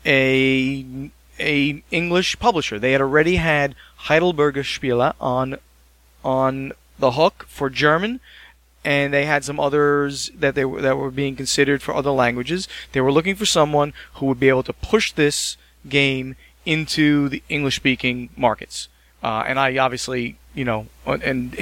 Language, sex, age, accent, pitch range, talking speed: English, male, 30-49, American, 125-145 Hz, 145 wpm